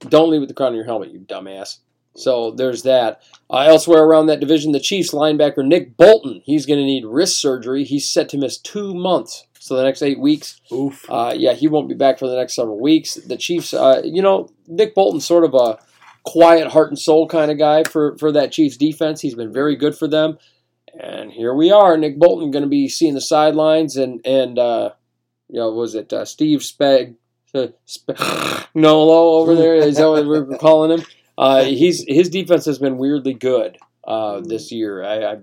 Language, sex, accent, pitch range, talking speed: English, male, American, 125-160 Hz, 215 wpm